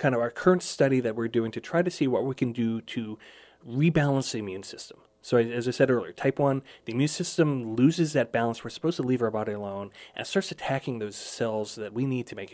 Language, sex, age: English, male, 30-49